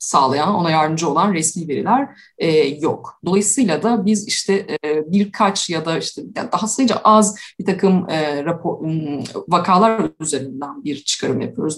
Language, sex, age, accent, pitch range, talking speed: Turkish, female, 30-49, native, 165-215 Hz, 155 wpm